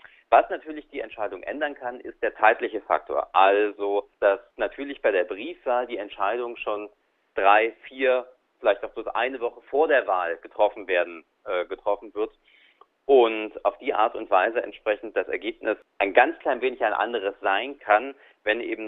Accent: German